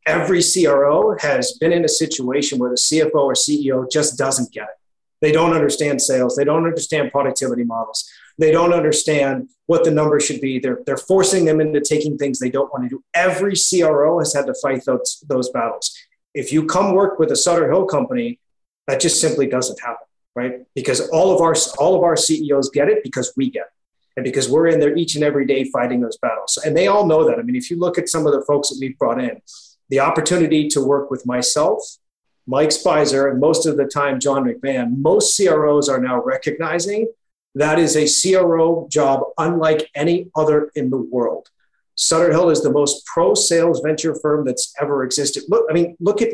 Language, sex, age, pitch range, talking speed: English, male, 30-49, 140-170 Hz, 210 wpm